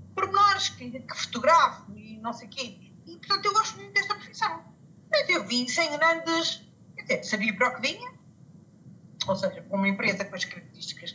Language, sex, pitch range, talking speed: Portuguese, female, 235-350 Hz, 190 wpm